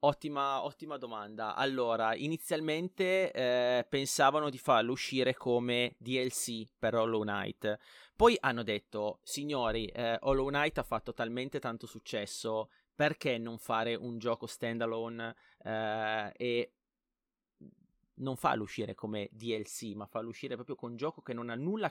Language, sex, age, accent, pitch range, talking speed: Italian, male, 30-49, native, 110-135 Hz, 140 wpm